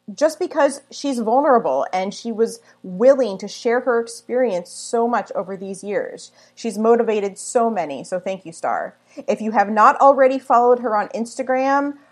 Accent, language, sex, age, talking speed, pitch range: American, English, female, 30-49, 170 wpm, 170-245 Hz